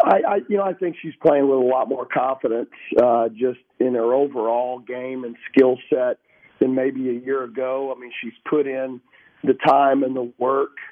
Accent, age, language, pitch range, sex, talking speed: American, 50-69, English, 125-140 Hz, male, 200 wpm